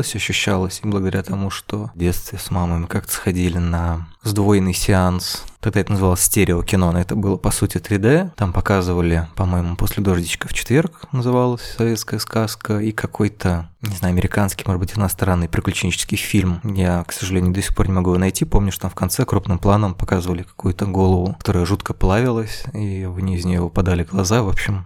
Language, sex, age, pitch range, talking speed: Russian, male, 20-39, 90-110 Hz, 180 wpm